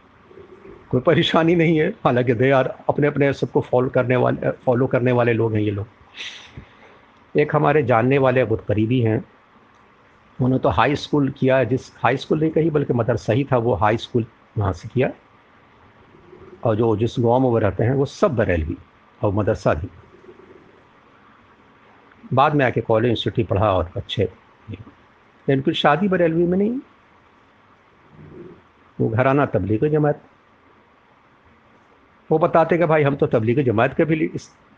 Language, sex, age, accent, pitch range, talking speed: Hindi, male, 50-69, native, 115-145 Hz, 155 wpm